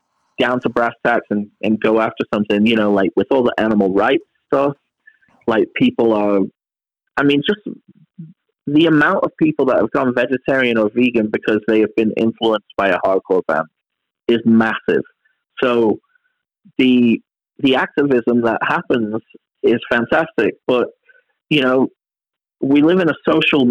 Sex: male